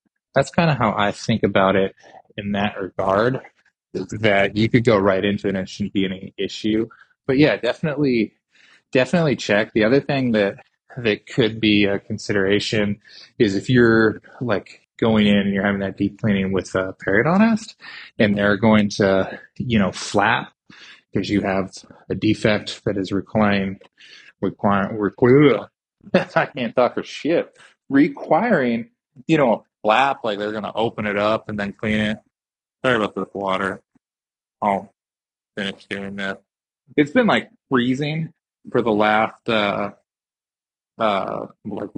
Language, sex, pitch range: English, male, 100-115 Hz